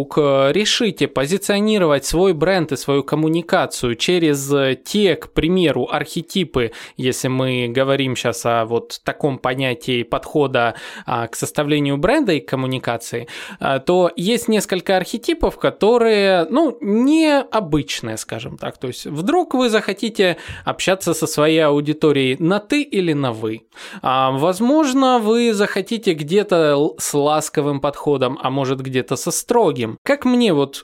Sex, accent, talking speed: male, native, 125 wpm